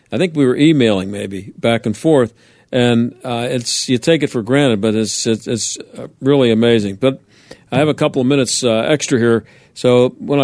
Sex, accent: male, American